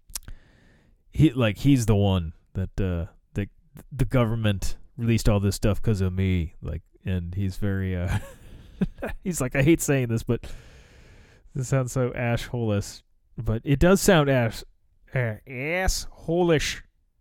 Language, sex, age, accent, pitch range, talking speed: English, male, 30-49, American, 90-130 Hz, 140 wpm